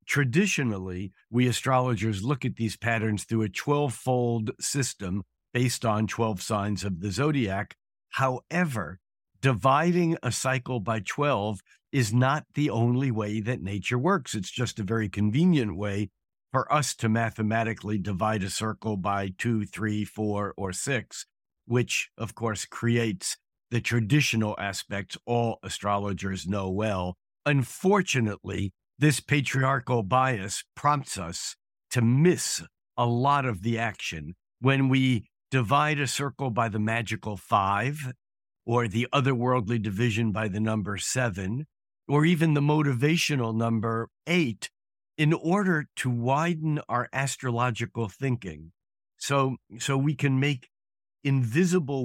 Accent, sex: American, male